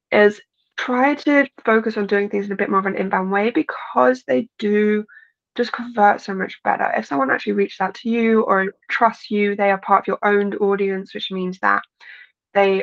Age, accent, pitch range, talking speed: 20-39, British, 190-230 Hz, 205 wpm